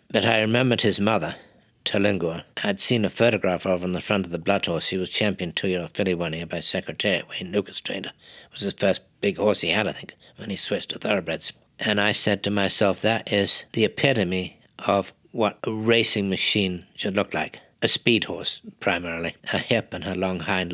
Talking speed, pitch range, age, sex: 210 wpm, 90-105 Hz, 60-79, male